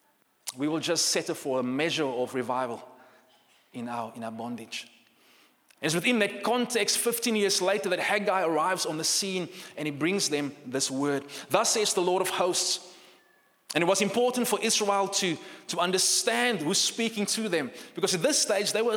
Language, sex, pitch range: English, male, 160-210 Hz